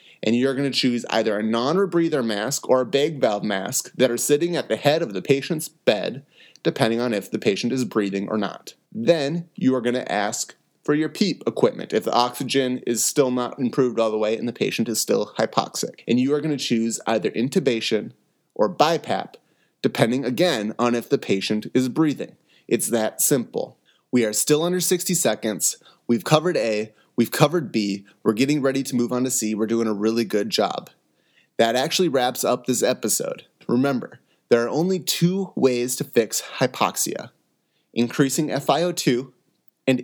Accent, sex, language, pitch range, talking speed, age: American, male, English, 115-150 Hz, 185 wpm, 30-49